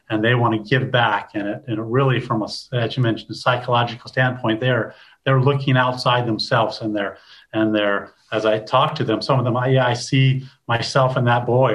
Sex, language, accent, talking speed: male, English, American, 215 wpm